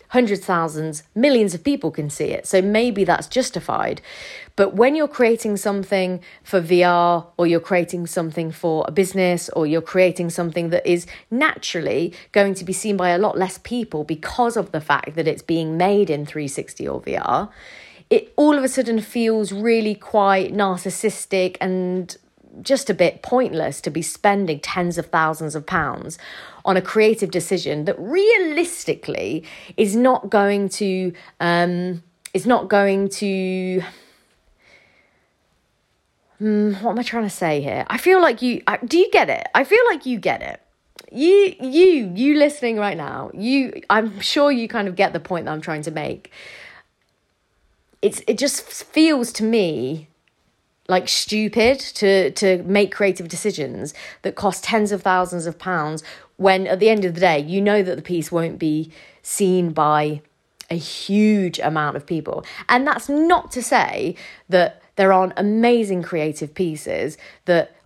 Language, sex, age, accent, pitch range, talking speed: English, female, 30-49, British, 175-230 Hz, 165 wpm